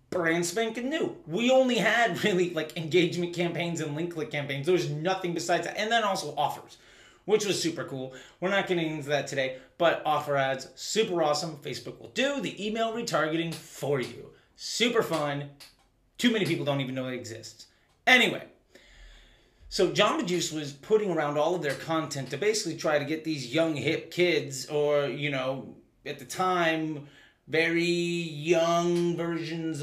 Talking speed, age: 170 wpm, 30-49